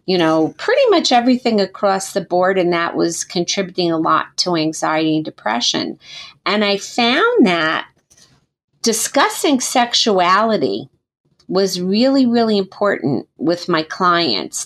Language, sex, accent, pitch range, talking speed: English, female, American, 160-200 Hz, 125 wpm